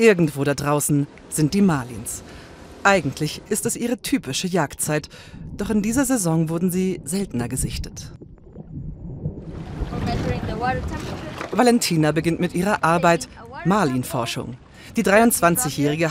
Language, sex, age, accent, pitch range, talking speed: German, female, 40-59, German, 145-215 Hz, 105 wpm